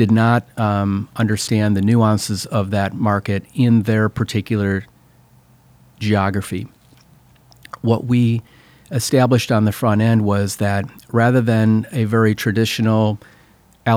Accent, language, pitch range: American, English, 105-115 Hz